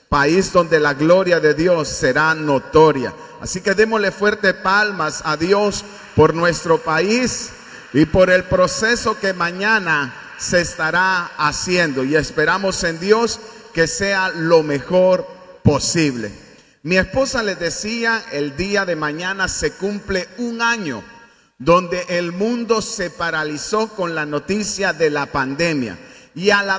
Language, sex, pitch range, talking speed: Spanish, male, 160-210 Hz, 140 wpm